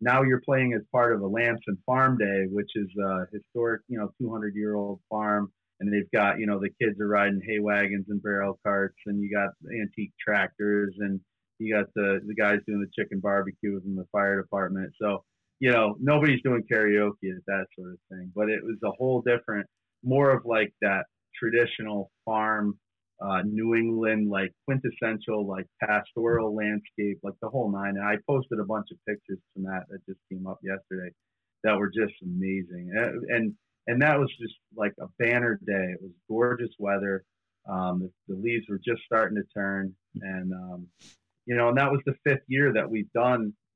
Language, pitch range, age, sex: English, 100-115 Hz, 30-49, male